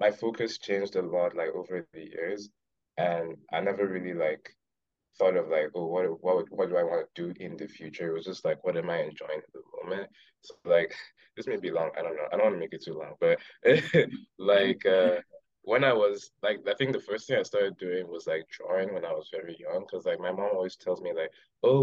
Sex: male